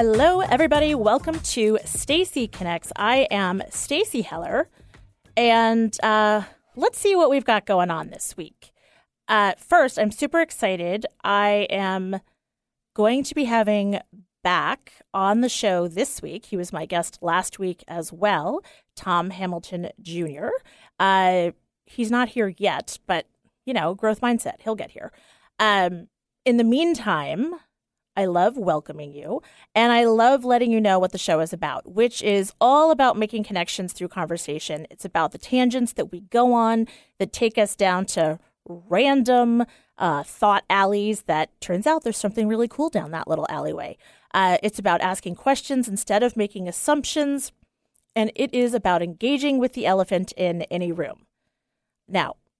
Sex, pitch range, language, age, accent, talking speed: female, 180-245 Hz, English, 30-49, American, 155 wpm